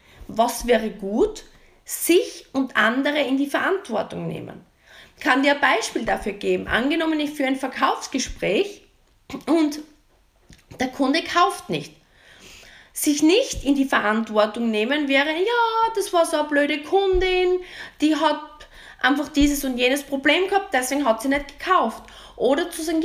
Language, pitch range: German, 260-355 Hz